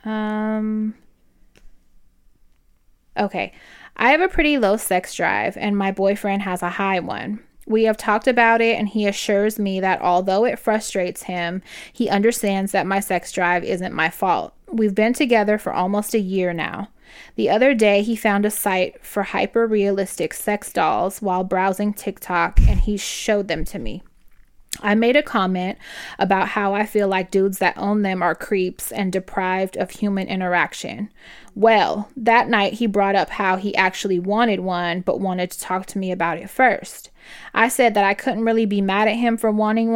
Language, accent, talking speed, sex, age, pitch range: English, American, 180 wpm, female, 10-29, 185-215 Hz